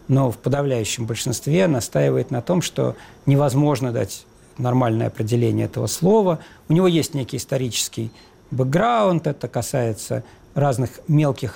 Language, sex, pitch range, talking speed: Russian, male, 120-170 Hz, 125 wpm